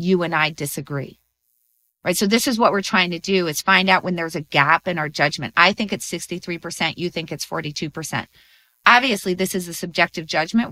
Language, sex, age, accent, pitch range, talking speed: English, female, 30-49, American, 155-195 Hz, 205 wpm